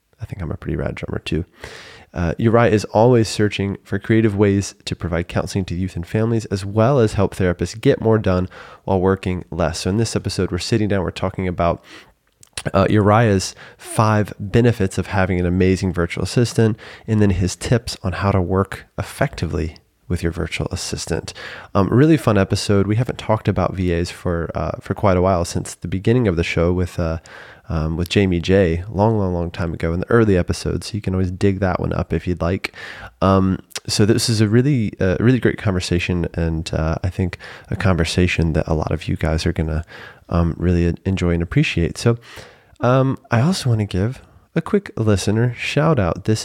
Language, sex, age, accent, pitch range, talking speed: English, male, 20-39, American, 90-110 Hz, 200 wpm